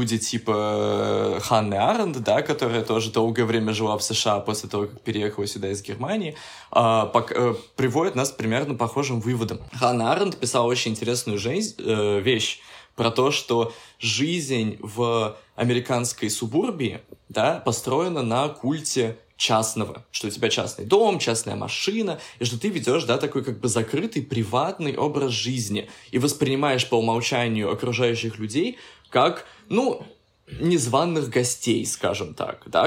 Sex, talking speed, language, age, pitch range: male, 145 wpm, Russian, 20-39, 110-135 Hz